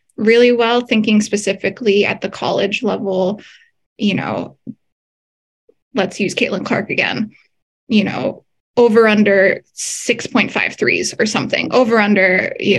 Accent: American